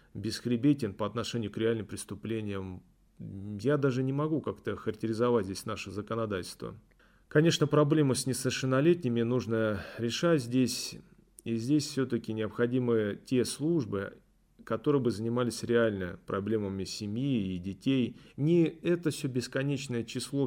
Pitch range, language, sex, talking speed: 110-130 Hz, Russian, male, 120 wpm